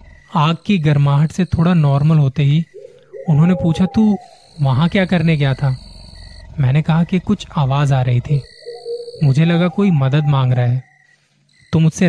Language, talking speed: Hindi, 165 wpm